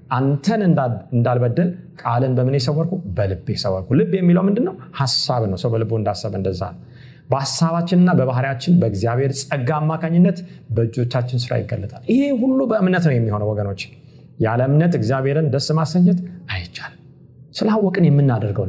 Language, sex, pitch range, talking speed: Amharic, male, 120-160 Hz, 105 wpm